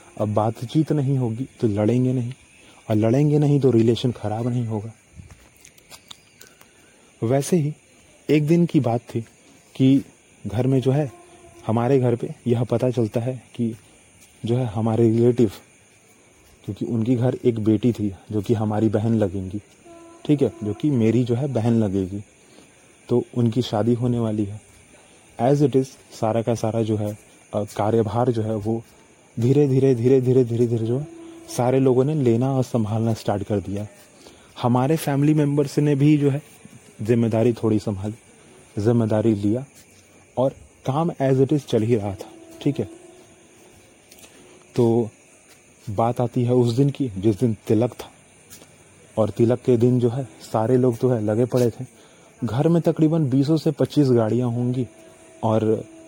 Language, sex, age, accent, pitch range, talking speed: Hindi, male, 30-49, native, 110-135 Hz, 160 wpm